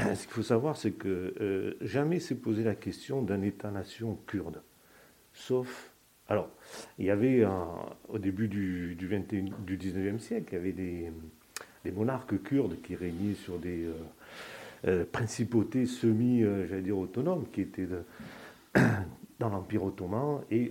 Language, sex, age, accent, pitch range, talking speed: French, male, 50-69, French, 95-115 Hz, 150 wpm